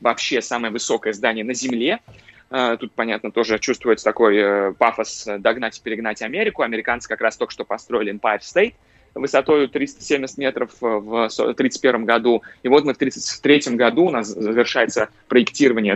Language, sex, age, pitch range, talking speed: Russian, male, 20-39, 115-165 Hz, 150 wpm